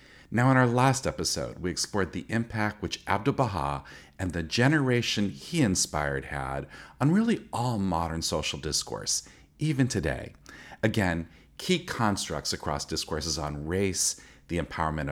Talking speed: 135 wpm